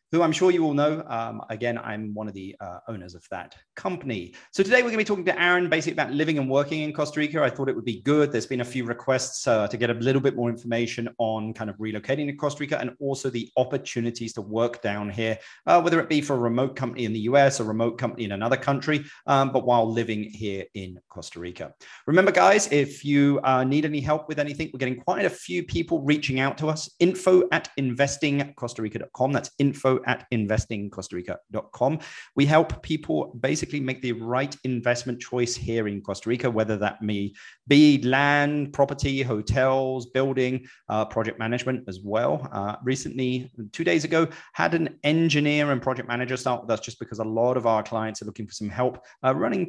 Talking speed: 210 wpm